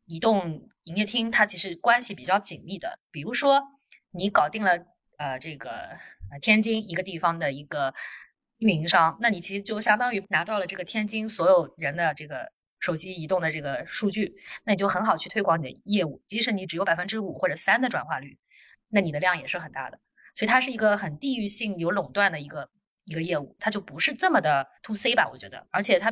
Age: 20-39